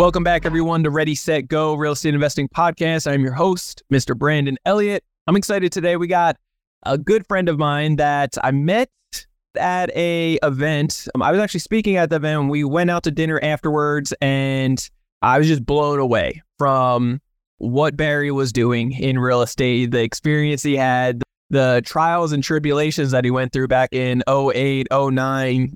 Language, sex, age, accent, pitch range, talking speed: English, male, 20-39, American, 130-155 Hz, 175 wpm